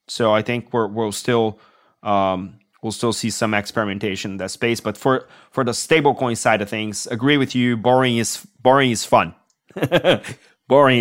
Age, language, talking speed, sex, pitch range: 30-49, English, 175 wpm, male, 105-125 Hz